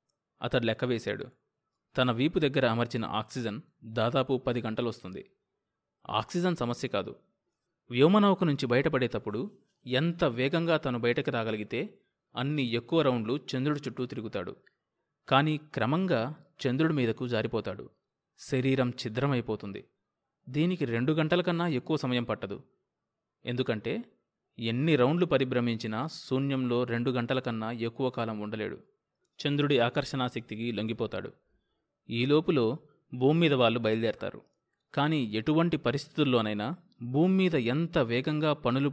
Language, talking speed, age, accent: Telugu, 100 wpm, 20-39, native